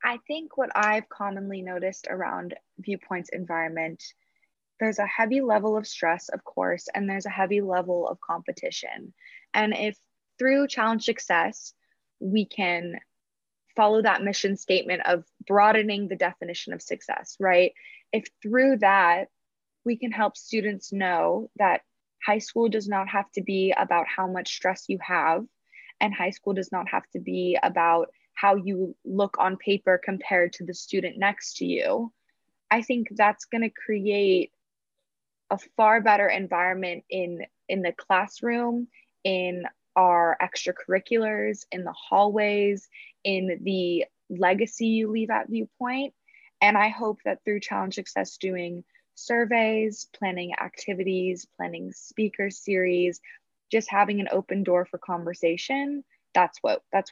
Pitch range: 180-220 Hz